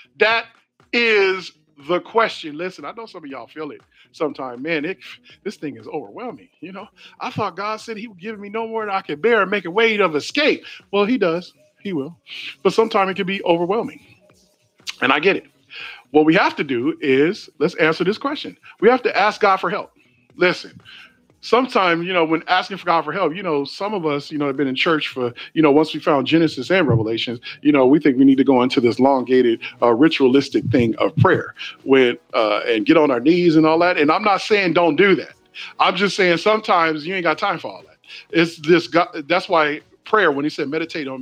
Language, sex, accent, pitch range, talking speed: English, male, American, 145-200 Hz, 230 wpm